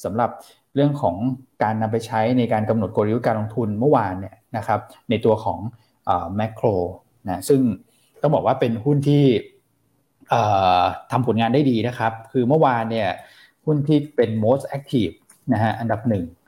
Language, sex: Thai, male